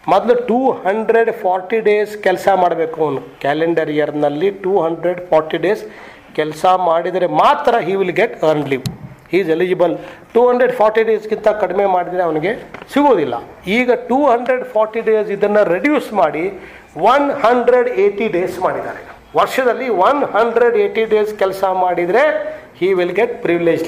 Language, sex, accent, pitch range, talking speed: English, male, Indian, 160-225 Hz, 110 wpm